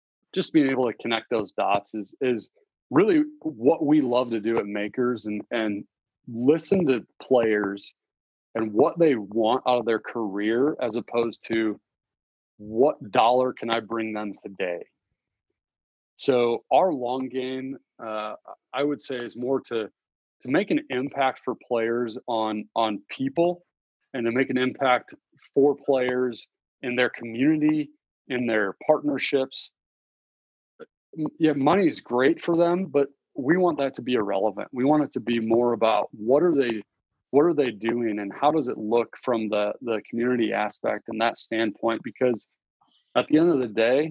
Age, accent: 30-49, American